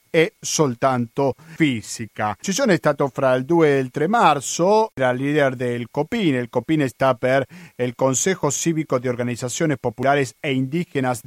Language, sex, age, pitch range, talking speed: Italian, male, 40-59, 130-170 Hz, 155 wpm